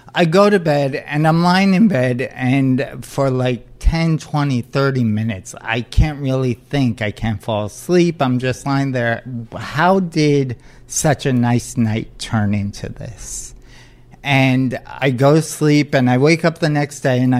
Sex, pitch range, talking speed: male, 120-150 Hz, 170 wpm